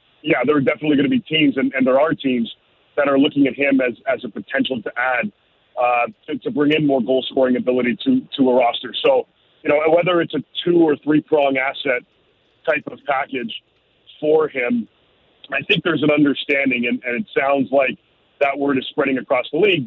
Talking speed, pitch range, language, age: 210 wpm, 125-150 Hz, English, 40-59